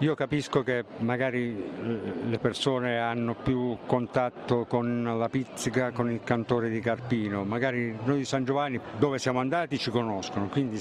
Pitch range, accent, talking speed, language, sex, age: 115-135 Hz, native, 155 wpm, Italian, male, 60-79